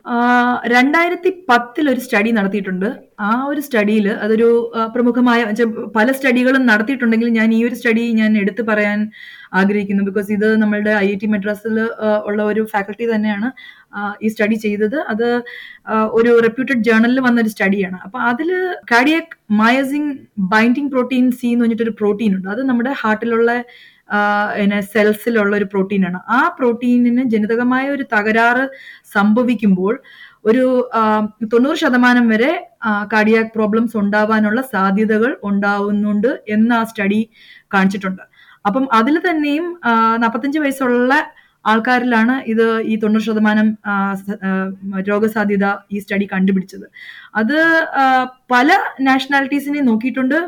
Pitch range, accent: 210-250 Hz, native